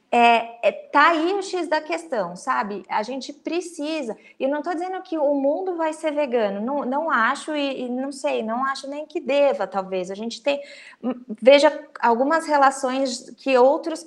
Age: 20-39